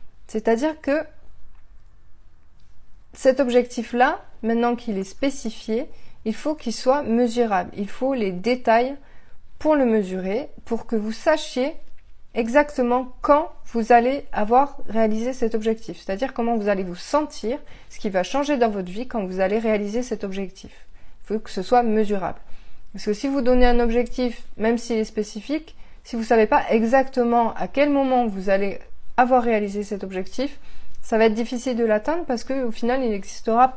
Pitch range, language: 190-250 Hz, French